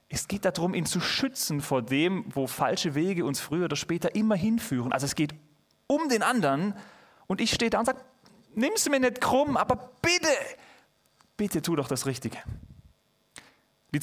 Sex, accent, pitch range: male, German, 135-185 Hz